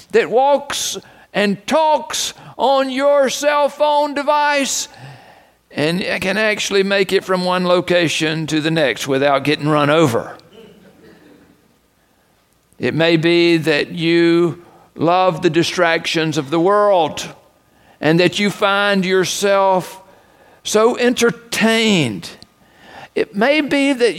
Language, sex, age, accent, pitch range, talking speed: English, male, 50-69, American, 180-255 Hz, 115 wpm